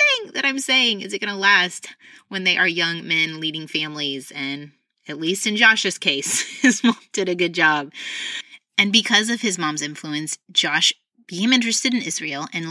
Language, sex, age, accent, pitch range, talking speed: English, female, 30-49, American, 160-220 Hz, 185 wpm